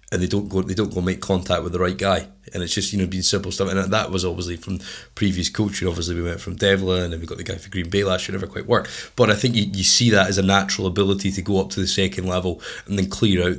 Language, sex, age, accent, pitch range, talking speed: English, male, 20-39, British, 90-105 Hz, 310 wpm